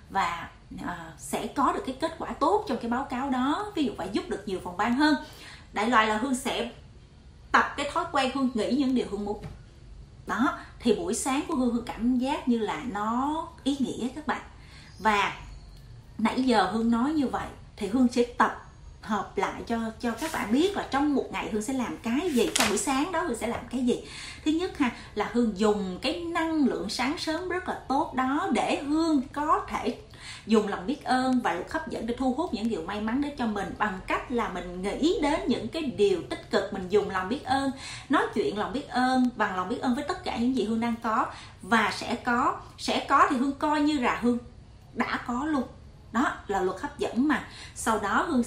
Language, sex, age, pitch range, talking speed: Vietnamese, female, 30-49, 220-285 Hz, 230 wpm